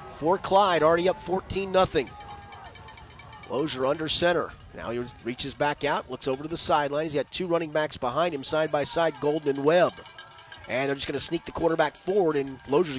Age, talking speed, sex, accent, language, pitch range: 30-49, 190 wpm, male, American, English, 140-175 Hz